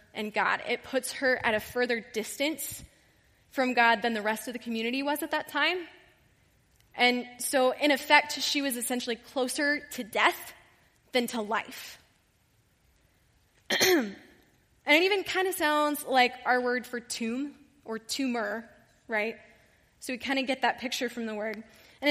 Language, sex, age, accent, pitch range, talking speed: English, female, 10-29, American, 225-285 Hz, 160 wpm